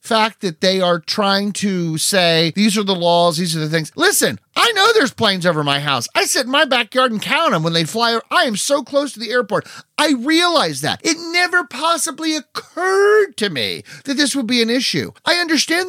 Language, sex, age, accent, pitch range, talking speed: English, male, 40-59, American, 205-300 Hz, 220 wpm